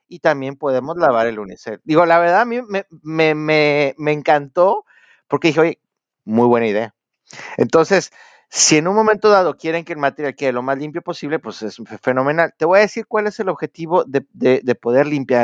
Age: 50-69